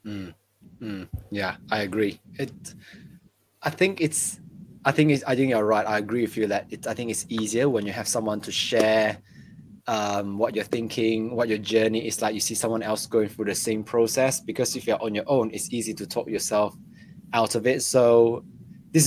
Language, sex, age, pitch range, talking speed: English, male, 20-39, 110-130 Hz, 200 wpm